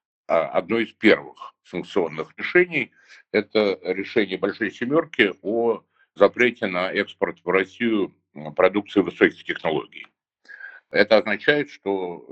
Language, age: Russian, 60-79